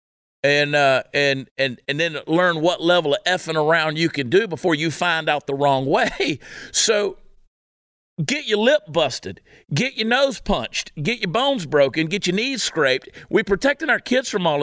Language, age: English, 50-69